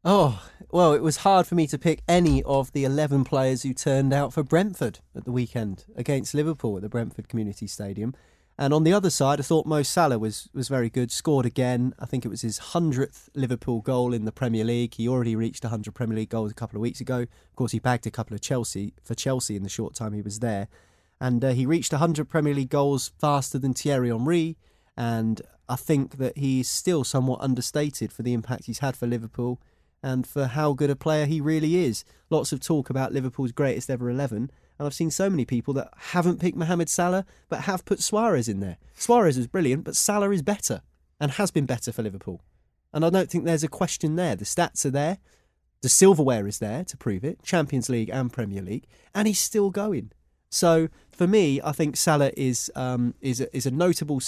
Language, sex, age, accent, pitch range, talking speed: English, male, 20-39, British, 115-155 Hz, 220 wpm